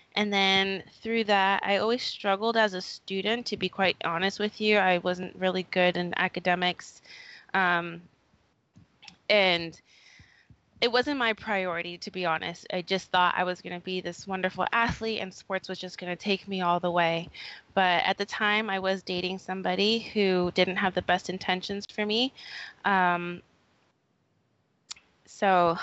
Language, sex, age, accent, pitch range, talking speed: English, female, 20-39, American, 180-205 Hz, 165 wpm